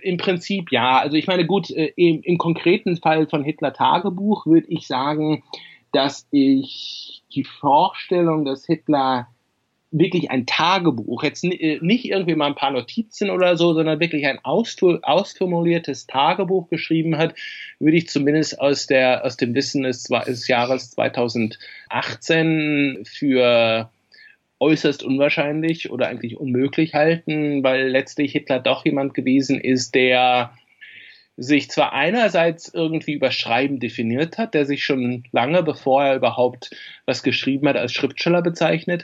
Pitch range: 130-170 Hz